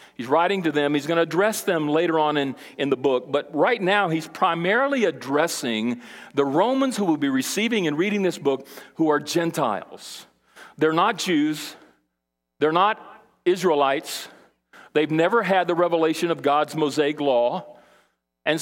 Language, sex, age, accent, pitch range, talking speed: English, male, 50-69, American, 135-205 Hz, 160 wpm